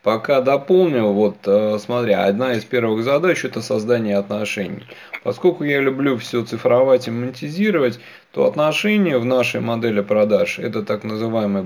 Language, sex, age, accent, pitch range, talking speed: Russian, male, 20-39, native, 115-150 Hz, 150 wpm